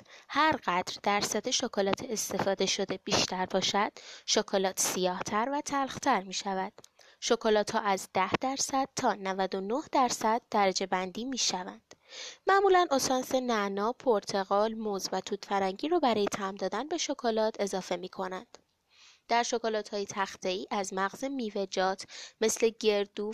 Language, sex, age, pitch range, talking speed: Persian, female, 20-39, 195-255 Hz, 135 wpm